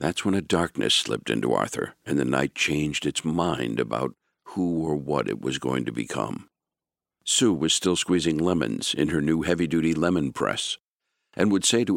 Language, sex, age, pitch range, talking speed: English, male, 60-79, 75-95 Hz, 185 wpm